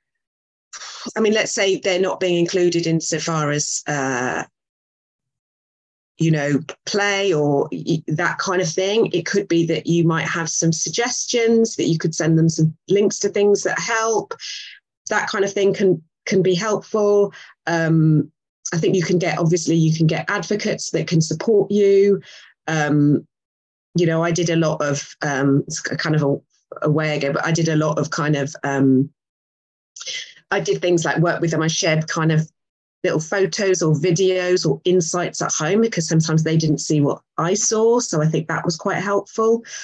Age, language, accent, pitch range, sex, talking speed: 30-49, English, British, 160-195 Hz, female, 185 wpm